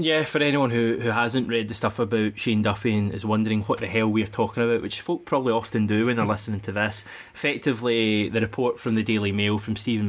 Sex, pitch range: male, 100-115 Hz